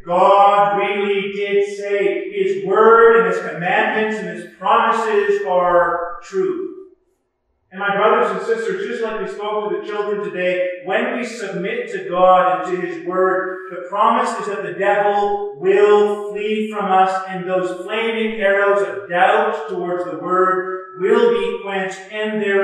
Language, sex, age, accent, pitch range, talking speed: English, male, 40-59, American, 180-230 Hz, 160 wpm